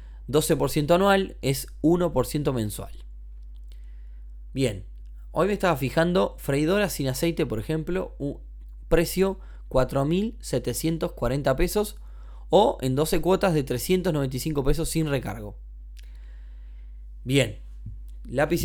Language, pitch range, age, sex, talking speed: Spanish, 110-170 Hz, 20-39, male, 95 wpm